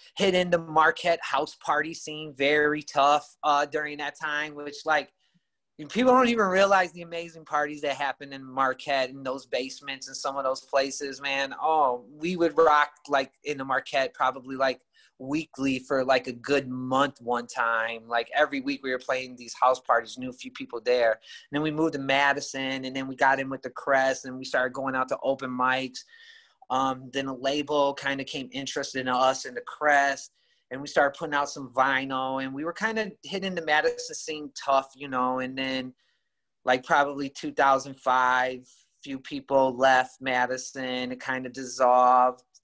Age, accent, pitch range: 30-49, American, 125-150 Hz